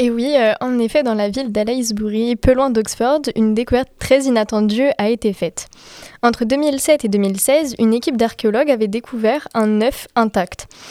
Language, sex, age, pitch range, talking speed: French, female, 20-39, 210-260 Hz, 170 wpm